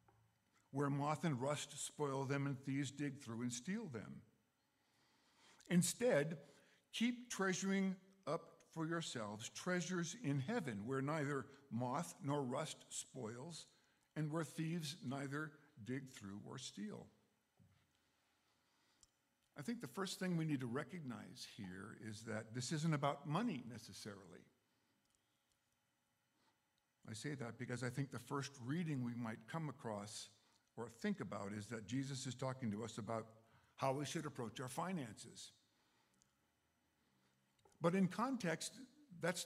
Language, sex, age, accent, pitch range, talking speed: English, male, 60-79, American, 125-180 Hz, 130 wpm